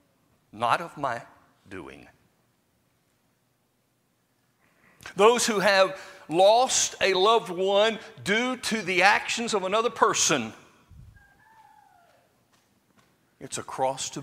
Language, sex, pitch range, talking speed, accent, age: English, male, 150-240 Hz, 95 wpm, American, 50-69